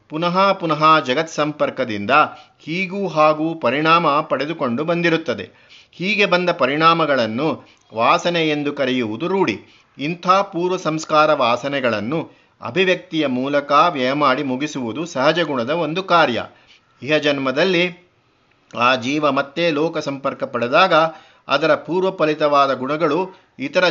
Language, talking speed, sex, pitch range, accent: Kannada, 100 wpm, male, 140-170 Hz, native